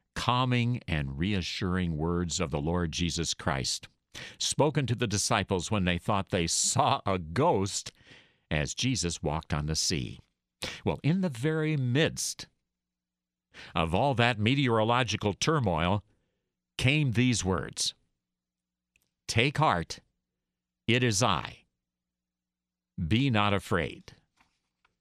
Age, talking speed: 60-79, 115 wpm